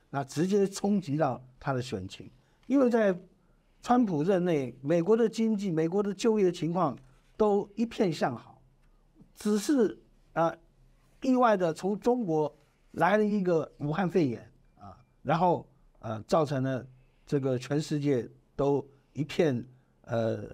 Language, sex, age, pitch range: Chinese, male, 50-69, 130-190 Hz